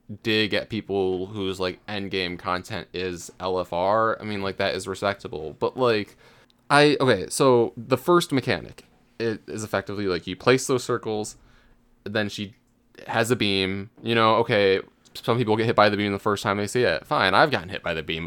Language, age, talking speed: English, 20-39, 195 wpm